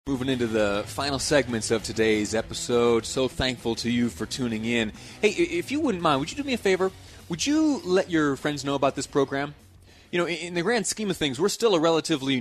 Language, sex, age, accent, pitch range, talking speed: English, male, 30-49, American, 110-145 Hz, 225 wpm